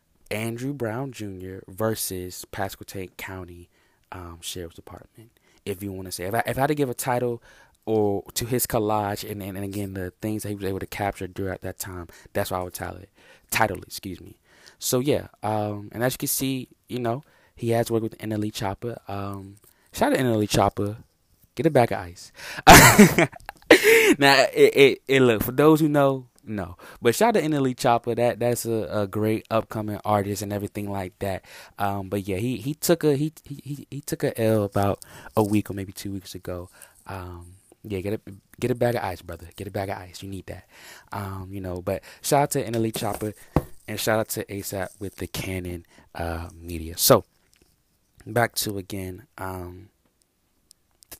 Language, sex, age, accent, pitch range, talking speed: English, male, 20-39, American, 95-120 Hz, 200 wpm